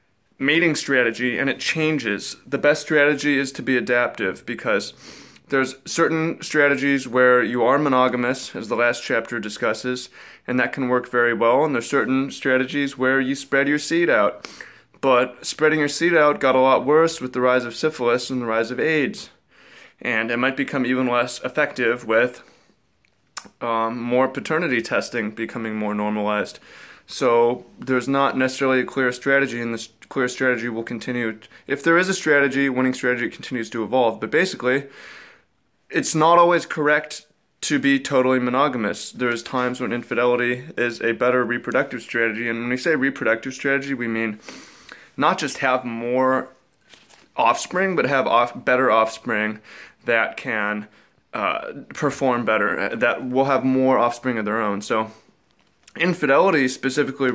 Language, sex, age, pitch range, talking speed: English, male, 20-39, 120-140 Hz, 155 wpm